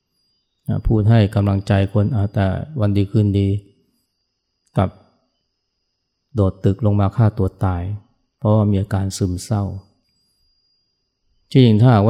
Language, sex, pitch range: Thai, male, 100-115 Hz